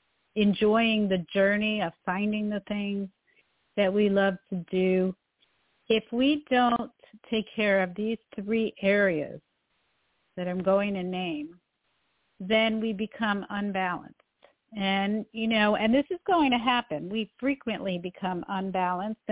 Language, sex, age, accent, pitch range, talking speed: English, female, 50-69, American, 185-220 Hz, 135 wpm